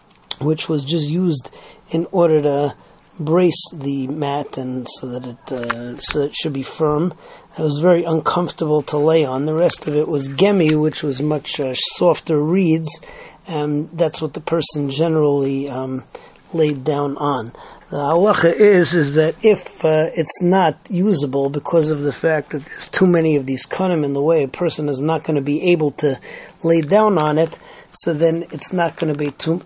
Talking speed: 195 wpm